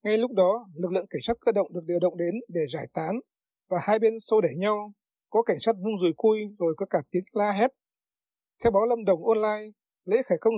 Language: Vietnamese